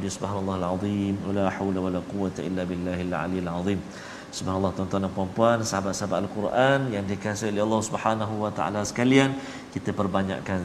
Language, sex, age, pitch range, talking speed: Malayalam, male, 50-69, 95-115 Hz, 145 wpm